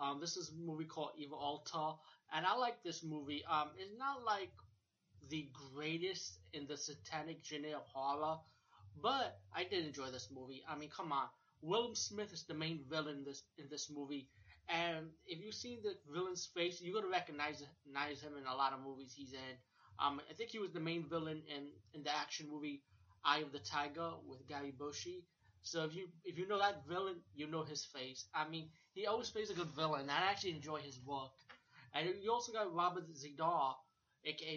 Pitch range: 140-165 Hz